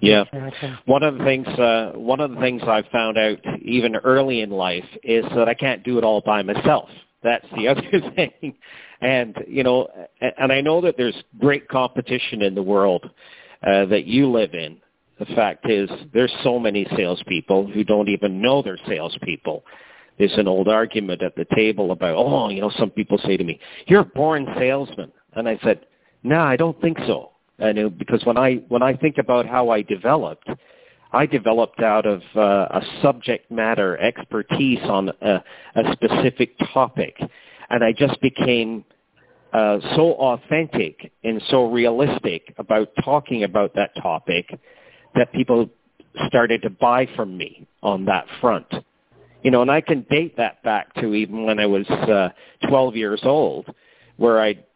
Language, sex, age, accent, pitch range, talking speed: English, male, 50-69, American, 105-130 Hz, 170 wpm